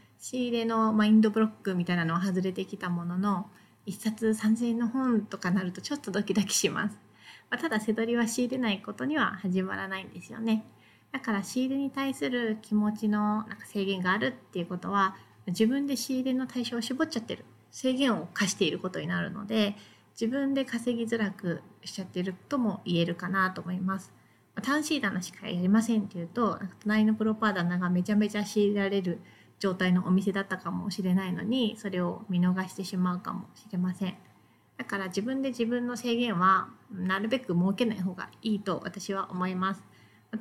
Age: 30-49